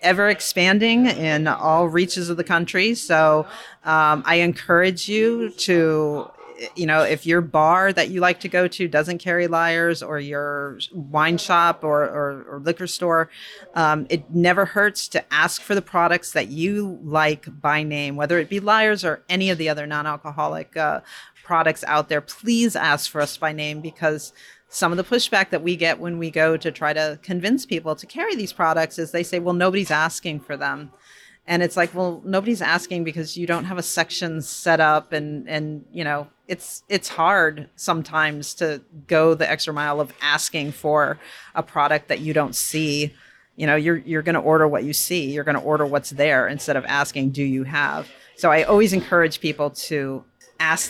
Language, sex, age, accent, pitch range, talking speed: English, female, 40-59, American, 150-175 Hz, 190 wpm